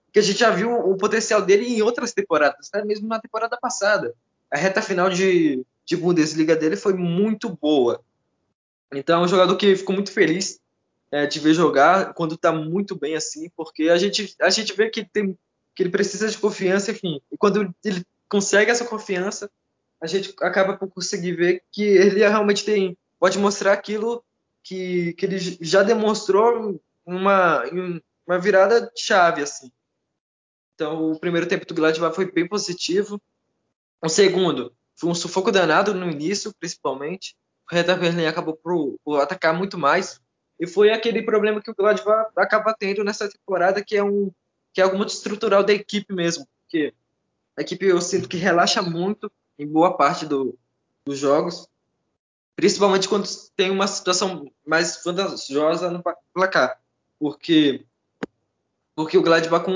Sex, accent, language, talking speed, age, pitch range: male, Brazilian, Portuguese, 155 wpm, 20-39, 165-205 Hz